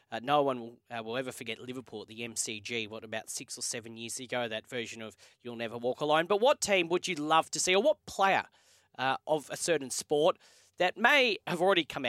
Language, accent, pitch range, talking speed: English, Australian, 120-150 Hz, 230 wpm